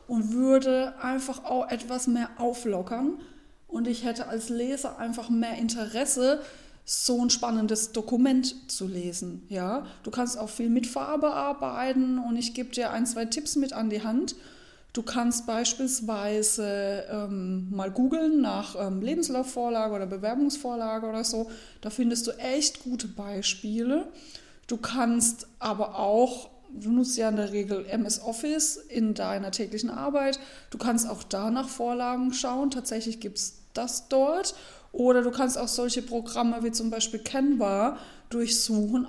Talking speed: 150 wpm